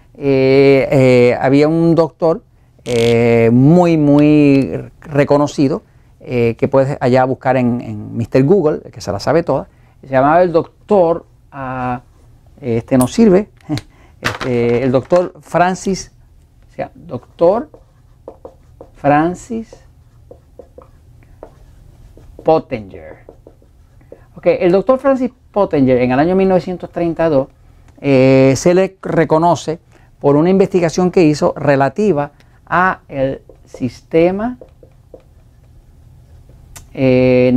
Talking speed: 100 wpm